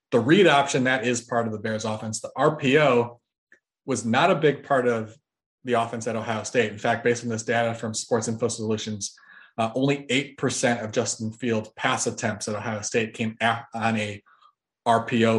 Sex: male